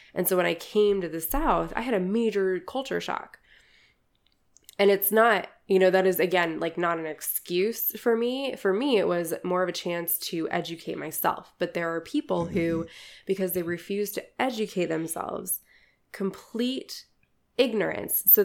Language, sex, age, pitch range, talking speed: English, female, 20-39, 170-220 Hz, 170 wpm